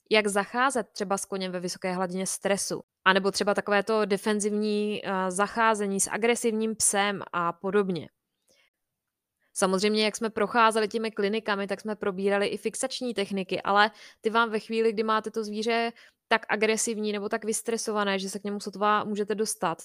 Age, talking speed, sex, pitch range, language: 20-39, 155 wpm, female, 195-225 Hz, Czech